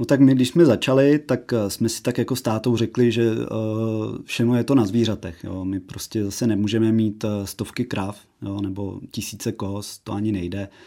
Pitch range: 105-115 Hz